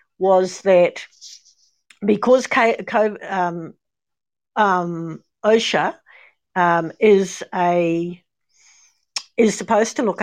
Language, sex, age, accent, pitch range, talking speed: English, female, 60-79, Australian, 175-215 Hz, 80 wpm